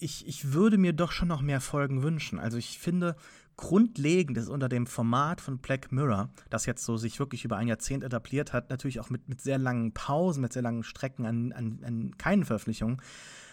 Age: 30-49